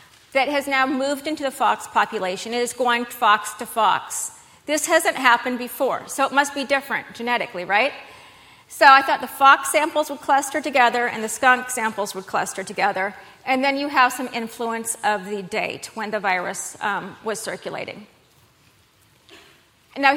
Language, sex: English, female